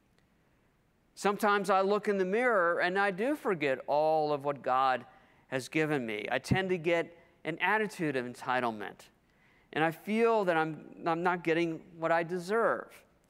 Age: 50-69